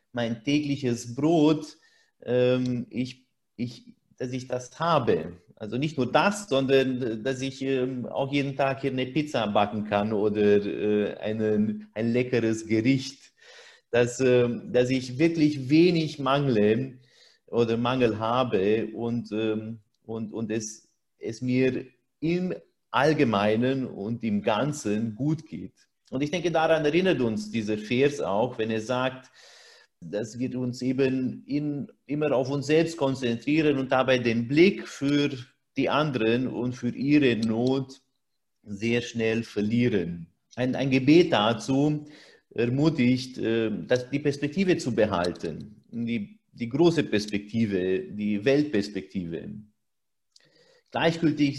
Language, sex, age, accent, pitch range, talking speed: German, male, 30-49, German, 110-145 Hz, 115 wpm